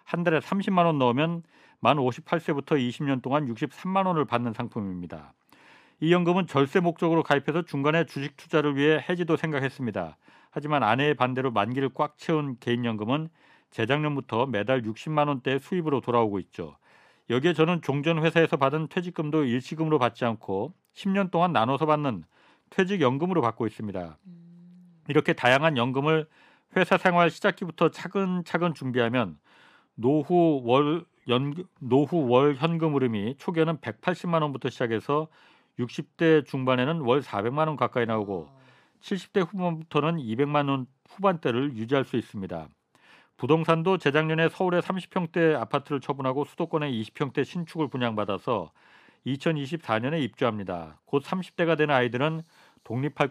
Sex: male